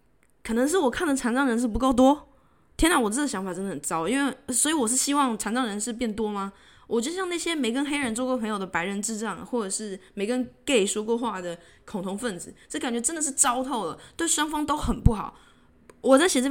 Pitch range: 215-285 Hz